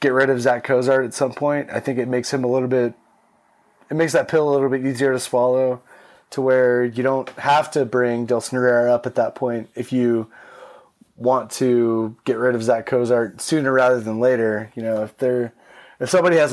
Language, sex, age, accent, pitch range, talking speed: English, male, 20-39, American, 115-135 Hz, 215 wpm